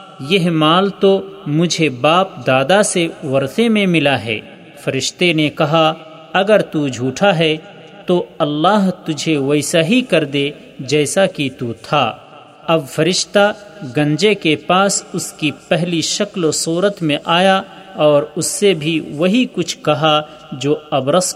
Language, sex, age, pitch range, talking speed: Urdu, male, 40-59, 150-185 Hz, 145 wpm